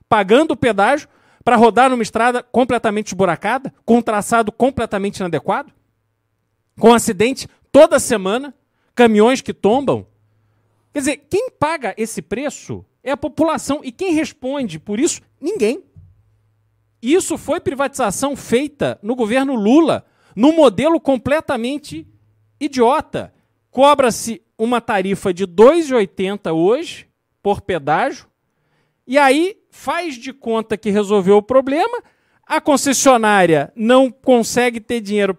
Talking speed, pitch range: 120 wpm, 210-295 Hz